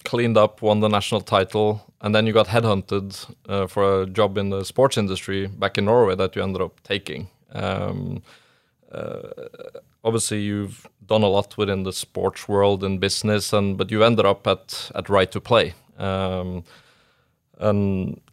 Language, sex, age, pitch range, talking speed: English, male, 30-49, 95-110 Hz, 170 wpm